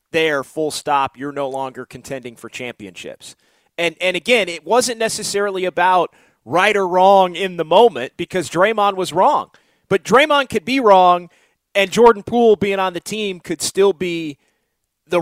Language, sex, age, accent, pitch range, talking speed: English, male, 30-49, American, 150-185 Hz, 165 wpm